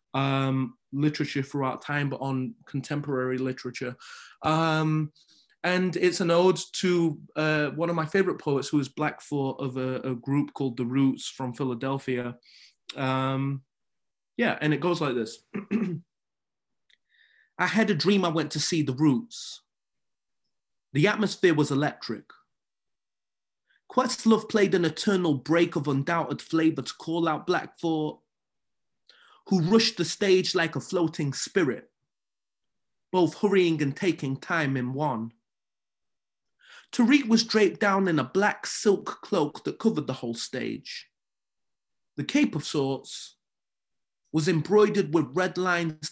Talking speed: 135 wpm